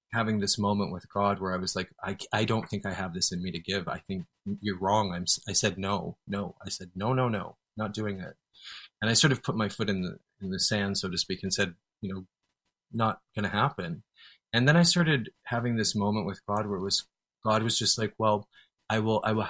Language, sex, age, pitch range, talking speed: English, male, 30-49, 100-115 Hz, 250 wpm